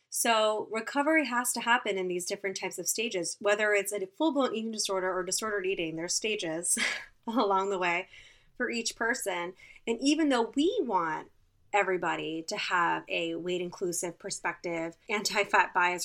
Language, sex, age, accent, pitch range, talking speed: English, female, 20-39, American, 185-255 Hz, 155 wpm